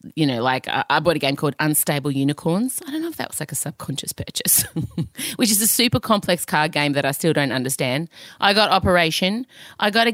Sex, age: female, 30-49